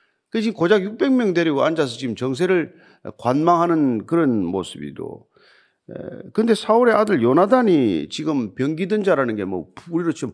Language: Korean